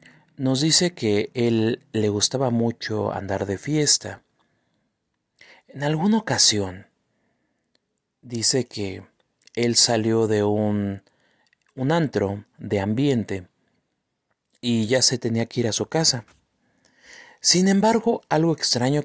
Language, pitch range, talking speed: Spanish, 105-145 Hz, 115 wpm